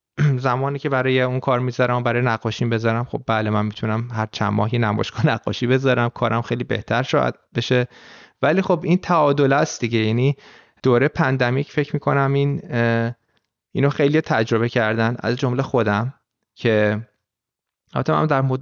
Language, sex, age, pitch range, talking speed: Persian, male, 30-49, 115-150 Hz, 155 wpm